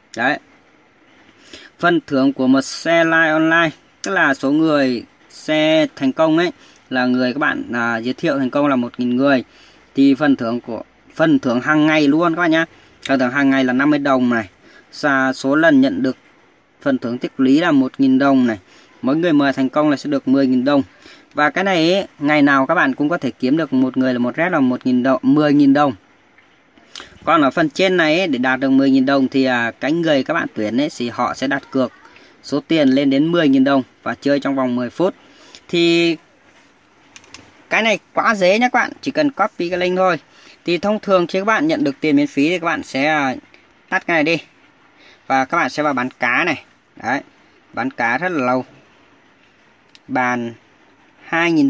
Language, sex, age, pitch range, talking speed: Vietnamese, female, 20-39, 130-185 Hz, 200 wpm